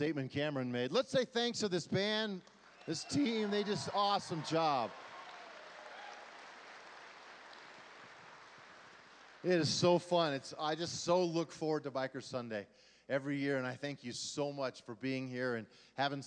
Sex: male